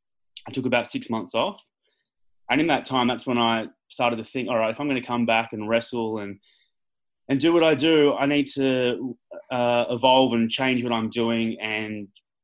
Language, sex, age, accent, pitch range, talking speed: English, male, 20-39, Australian, 110-125 Hz, 205 wpm